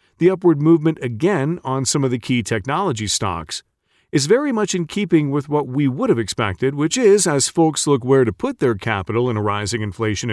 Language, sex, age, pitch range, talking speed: English, male, 40-59, 110-155 Hz, 210 wpm